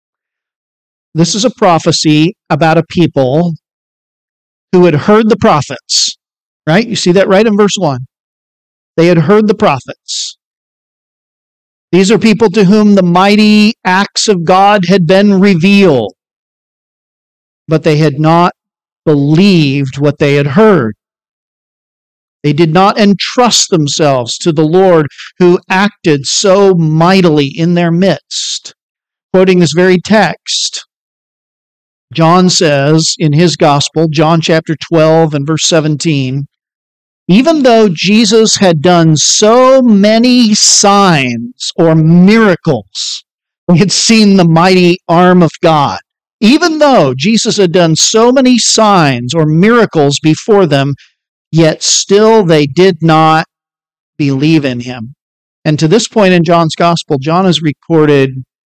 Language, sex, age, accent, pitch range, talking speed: English, male, 50-69, American, 155-200 Hz, 130 wpm